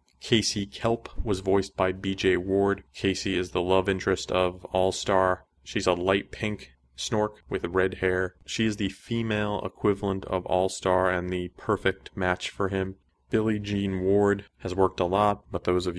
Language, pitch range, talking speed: English, 90-100 Hz, 170 wpm